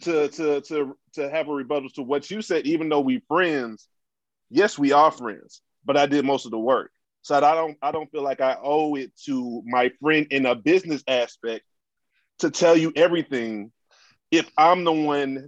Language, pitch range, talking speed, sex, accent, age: English, 140-175 Hz, 200 wpm, male, American, 30-49